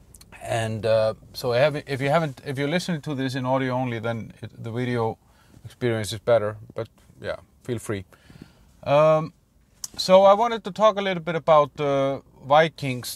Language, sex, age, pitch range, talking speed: English, male, 30-49, 120-140 Hz, 170 wpm